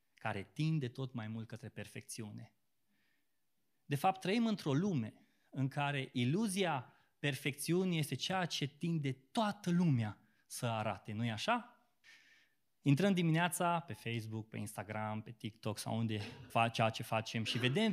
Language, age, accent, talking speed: Romanian, 20-39, native, 145 wpm